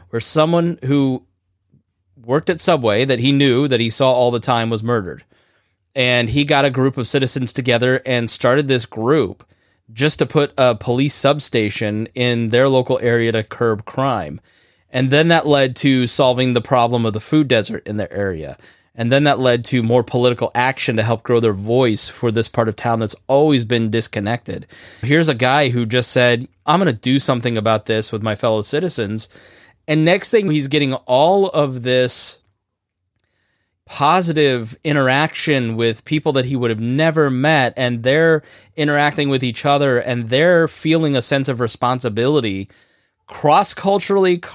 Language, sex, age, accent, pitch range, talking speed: English, male, 20-39, American, 115-145 Hz, 170 wpm